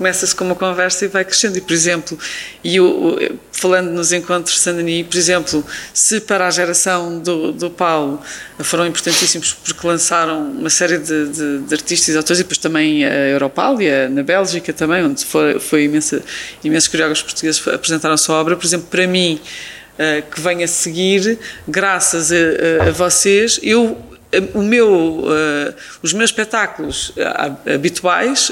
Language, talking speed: Portuguese, 170 wpm